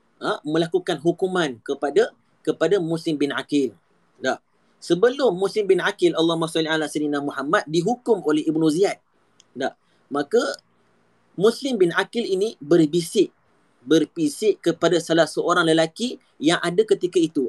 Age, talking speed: 30-49, 115 wpm